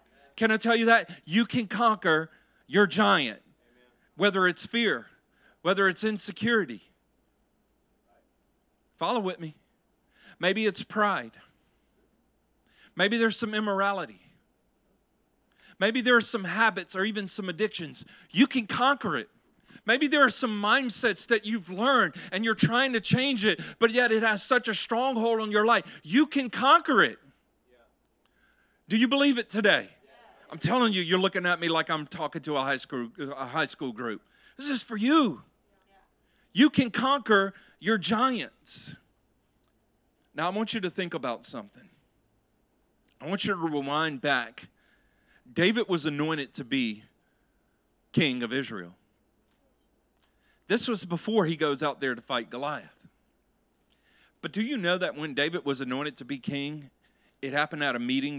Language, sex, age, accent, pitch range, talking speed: English, male, 40-59, American, 160-230 Hz, 150 wpm